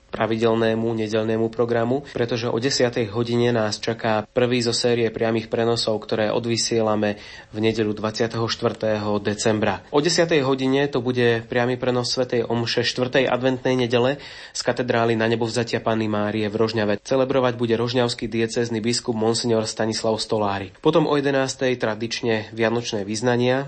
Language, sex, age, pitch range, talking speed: Slovak, male, 30-49, 110-125 Hz, 135 wpm